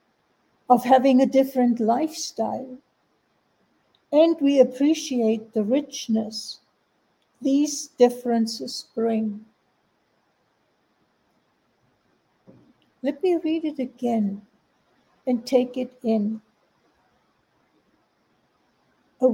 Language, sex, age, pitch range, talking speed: English, female, 60-79, 230-275 Hz, 70 wpm